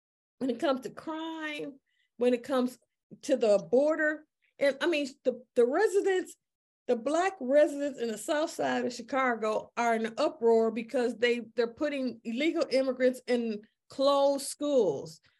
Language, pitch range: English, 230-300 Hz